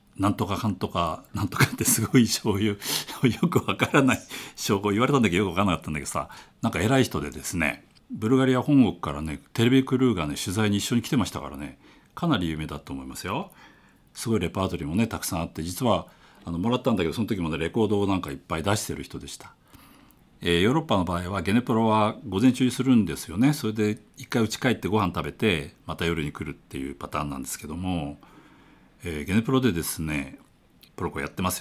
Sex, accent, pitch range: male, native, 80-120 Hz